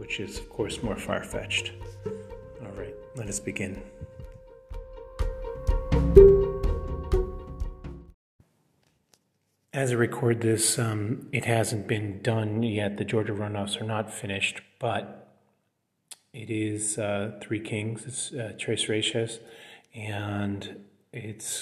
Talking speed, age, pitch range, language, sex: 110 wpm, 30-49, 105-120 Hz, English, male